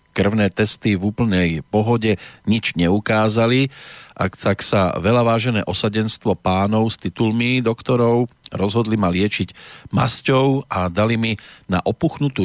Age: 40-59